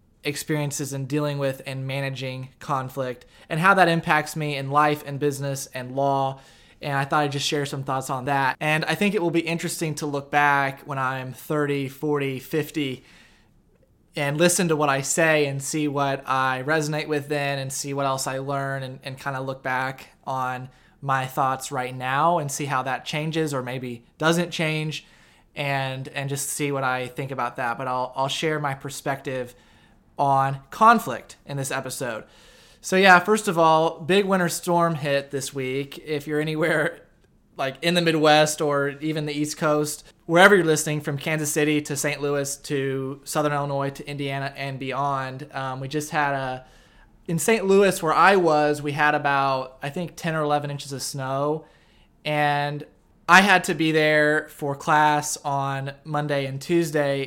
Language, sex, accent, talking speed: English, male, American, 185 wpm